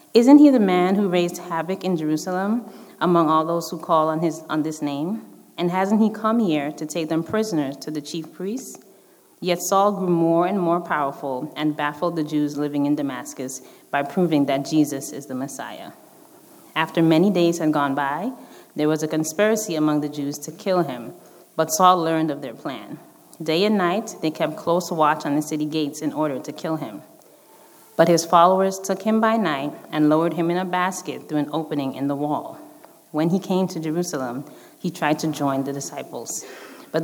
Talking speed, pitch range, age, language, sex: 200 wpm, 150-185 Hz, 30-49, English, female